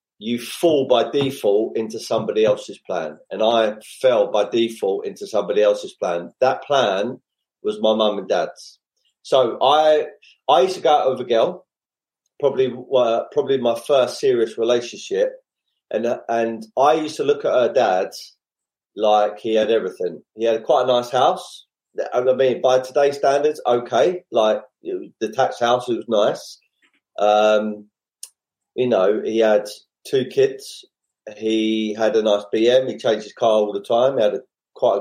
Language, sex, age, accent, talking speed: English, male, 30-49, British, 165 wpm